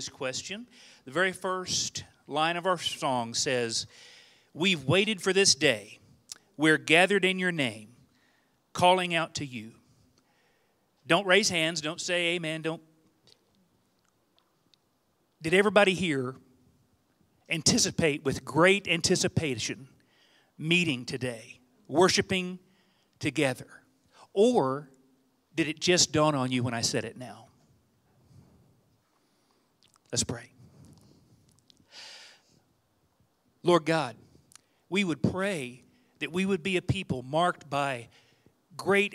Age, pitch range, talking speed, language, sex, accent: 40-59, 130-180 Hz, 105 wpm, English, male, American